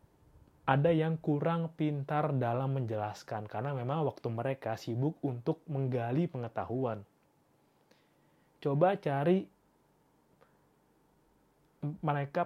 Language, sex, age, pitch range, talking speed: Indonesian, male, 20-39, 125-165 Hz, 80 wpm